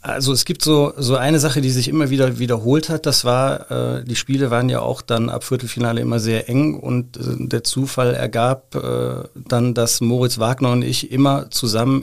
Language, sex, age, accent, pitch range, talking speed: German, male, 40-59, German, 110-120 Hz, 205 wpm